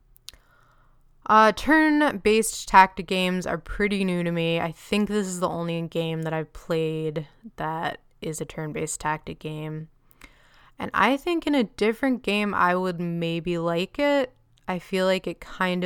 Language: English